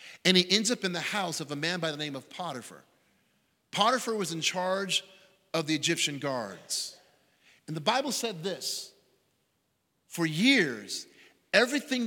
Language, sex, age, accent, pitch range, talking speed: English, male, 40-59, American, 150-205 Hz, 155 wpm